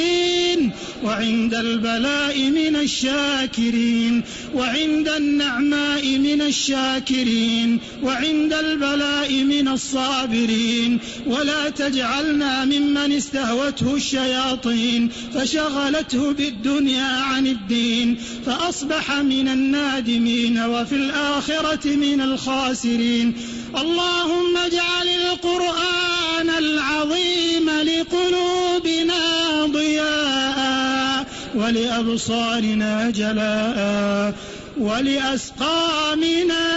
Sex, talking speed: male, 60 wpm